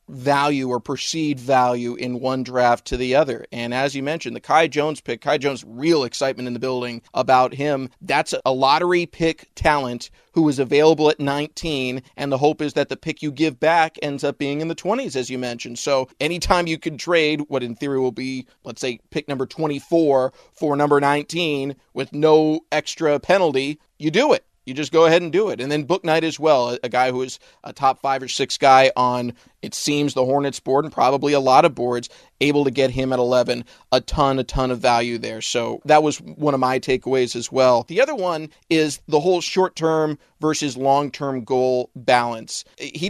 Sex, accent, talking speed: male, American, 210 wpm